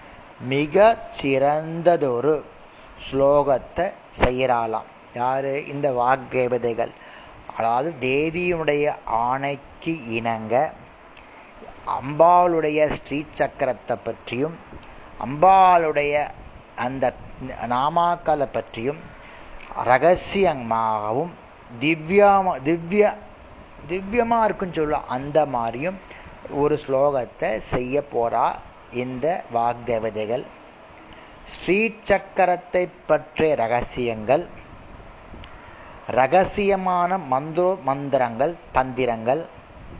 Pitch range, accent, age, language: 130-180 Hz, native, 30-49, Tamil